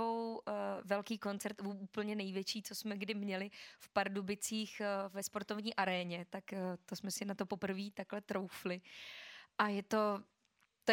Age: 20-39